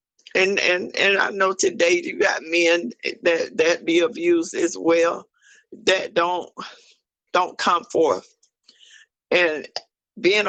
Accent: American